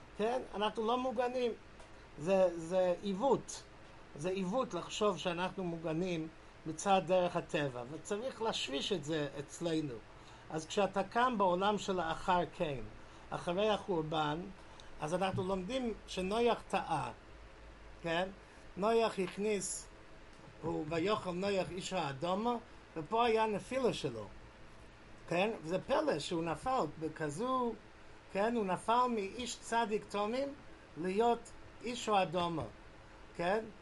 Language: English